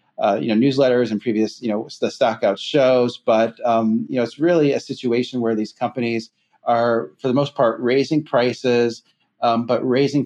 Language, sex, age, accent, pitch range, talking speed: English, male, 30-49, American, 110-125 Hz, 185 wpm